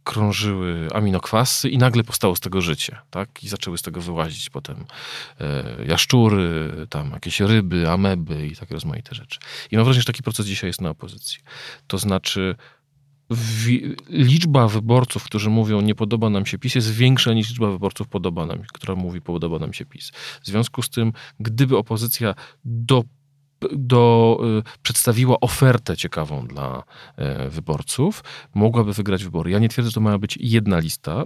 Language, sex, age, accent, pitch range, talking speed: Polish, male, 40-59, native, 95-125 Hz, 160 wpm